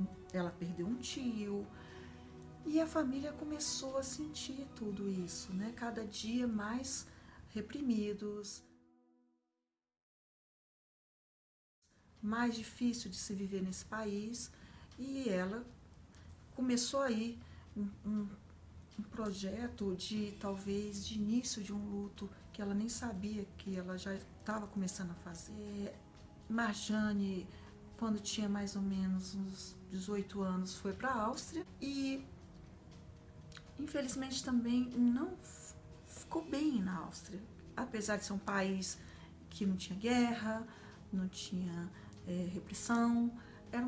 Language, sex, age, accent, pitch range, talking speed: Portuguese, female, 40-59, Brazilian, 185-230 Hz, 115 wpm